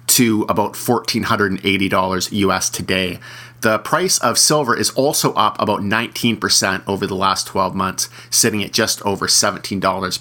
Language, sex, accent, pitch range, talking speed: English, male, American, 100-130 Hz, 140 wpm